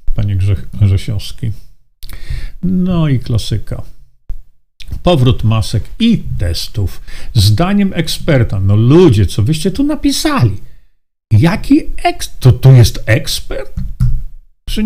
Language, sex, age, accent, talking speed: Polish, male, 50-69, native, 95 wpm